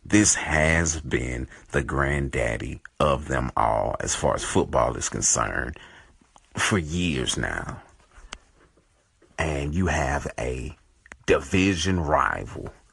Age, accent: 40-59, American